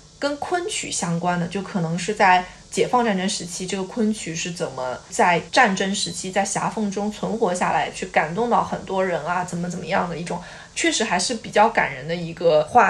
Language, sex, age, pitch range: Chinese, female, 20-39, 180-255 Hz